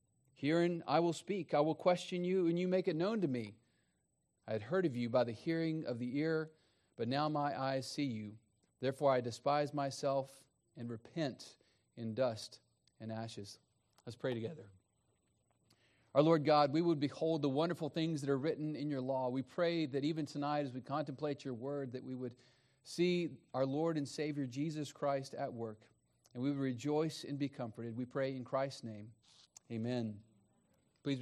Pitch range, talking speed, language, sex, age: 125-155 Hz, 185 wpm, English, male, 40-59